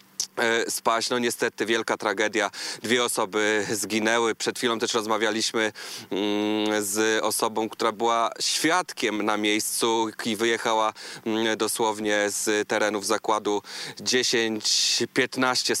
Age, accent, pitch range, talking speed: 20-39, Polish, 105-115 Hz, 95 wpm